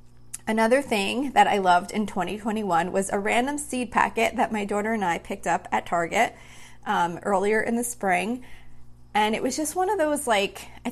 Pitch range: 180-220 Hz